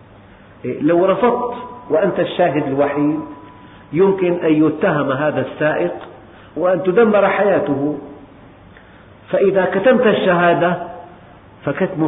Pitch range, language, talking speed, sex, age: 120-175 Hz, Arabic, 85 wpm, male, 50-69